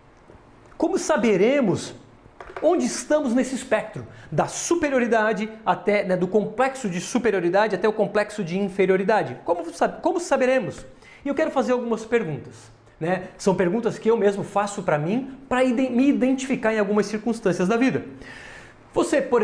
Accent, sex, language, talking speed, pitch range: Brazilian, male, Portuguese, 145 wpm, 195-255 Hz